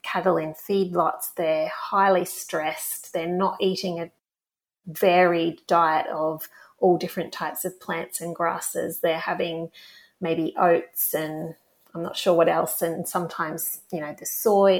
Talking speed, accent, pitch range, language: 145 wpm, Australian, 170-220 Hz, English